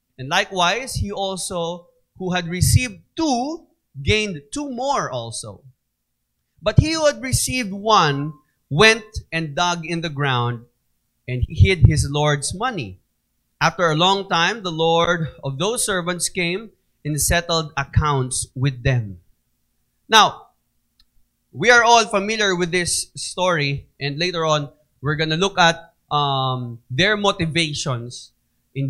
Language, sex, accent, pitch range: Filipino, male, native, 135-170 Hz